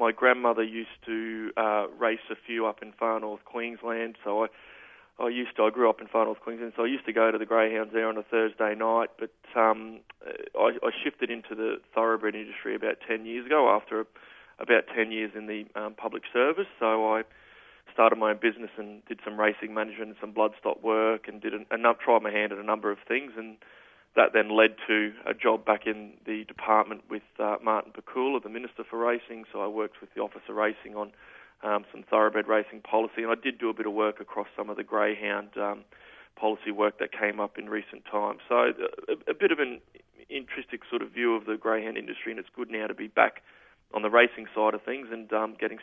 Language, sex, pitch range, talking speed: English, male, 110-115 Hz, 225 wpm